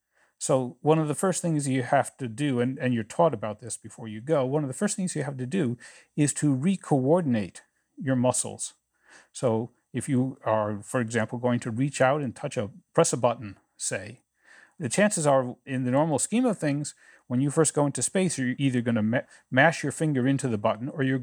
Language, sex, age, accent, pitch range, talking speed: English, male, 50-69, American, 120-150 Hz, 220 wpm